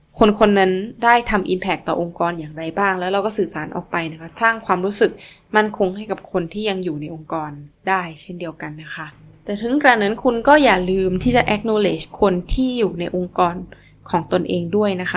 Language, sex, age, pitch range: Thai, female, 20-39, 175-210 Hz